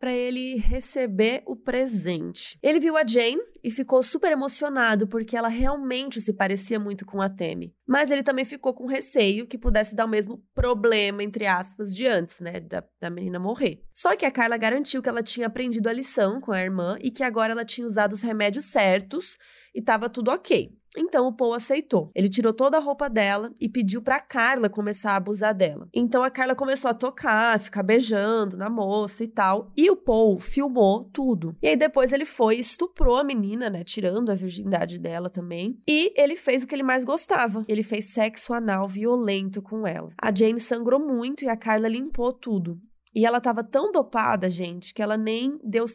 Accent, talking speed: Brazilian, 200 wpm